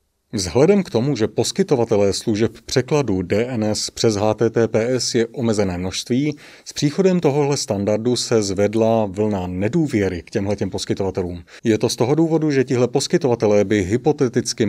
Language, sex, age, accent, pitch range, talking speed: Czech, male, 30-49, native, 105-135 Hz, 140 wpm